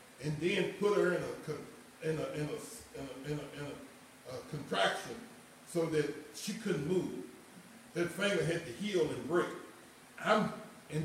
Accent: American